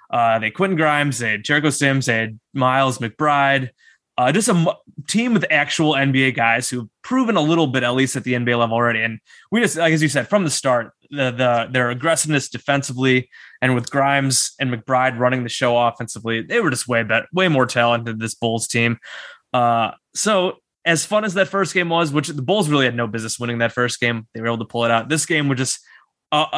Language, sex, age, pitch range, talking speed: English, male, 20-39, 120-150 Hz, 230 wpm